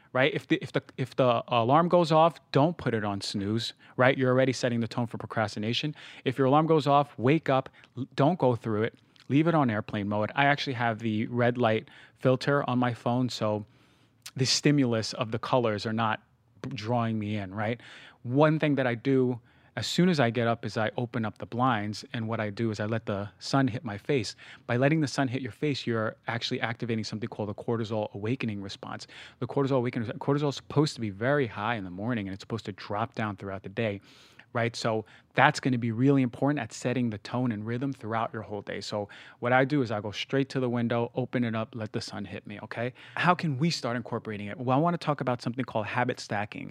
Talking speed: 225 wpm